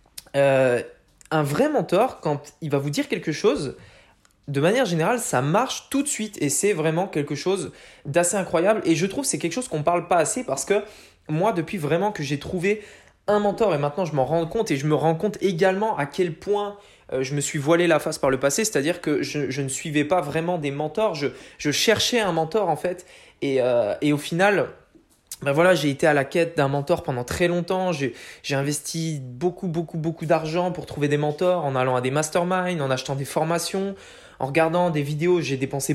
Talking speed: 220 wpm